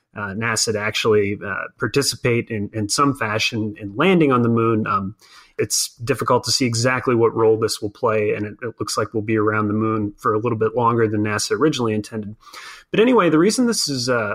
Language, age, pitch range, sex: English, 30-49, 110-140 Hz, male